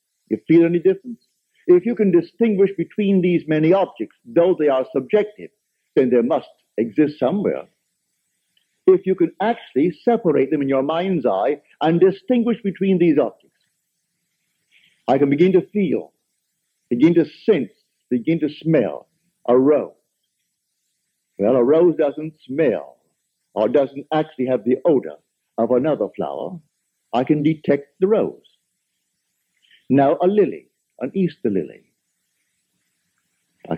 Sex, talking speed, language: male, 135 wpm, English